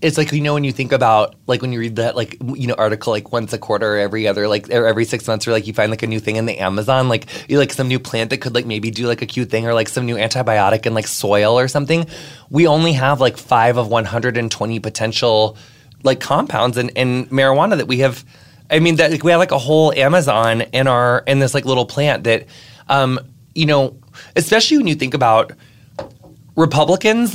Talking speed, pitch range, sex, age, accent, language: 240 wpm, 115-145 Hz, male, 20-39, American, English